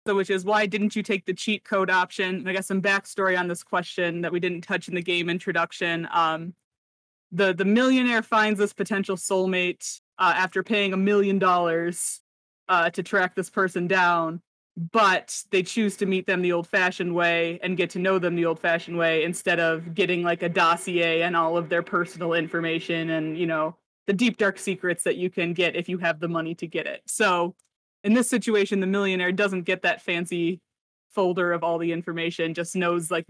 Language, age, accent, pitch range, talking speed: English, 20-39, American, 170-195 Hz, 205 wpm